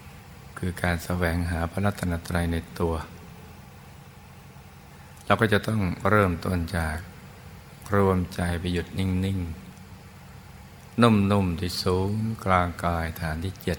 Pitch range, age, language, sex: 85-100 Hz, 60-79, Thai, male